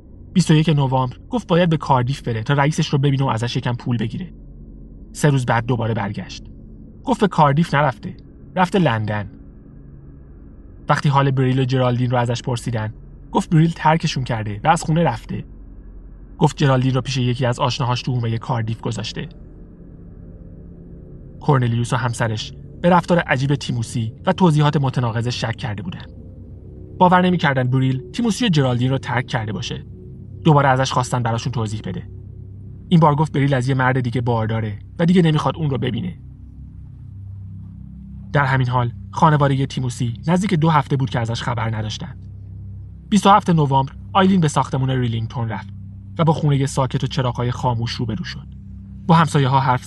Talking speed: 160 wpm